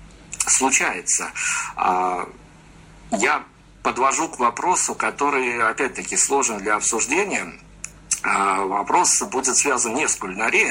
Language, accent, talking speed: Russian, native, 90 wpm